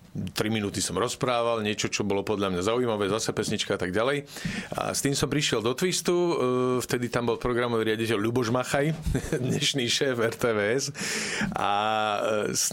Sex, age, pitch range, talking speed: male, 40-59, 105-130 Hz, 160 wpm